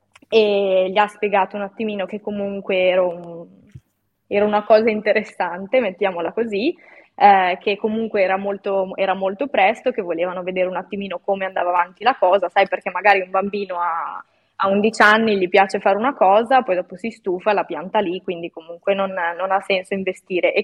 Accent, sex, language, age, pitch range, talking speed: native, female, Italian, 20-39, 185-215 Hz, 180 wpm